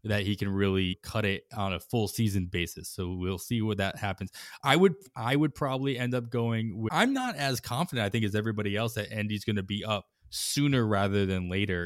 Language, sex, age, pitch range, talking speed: English, male, 20-39, 95-120 Hz, 230 wpm